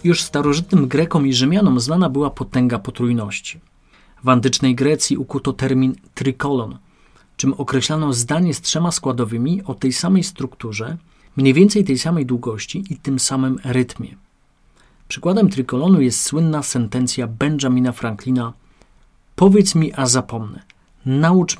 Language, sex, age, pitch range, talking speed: Polish, male, 40-59, 120-145 Hz, 130 wpm